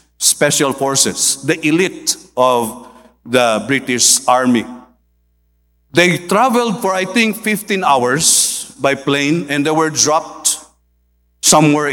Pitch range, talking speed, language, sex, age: 115-165 Hz, 110 wpm, English, male, 50-69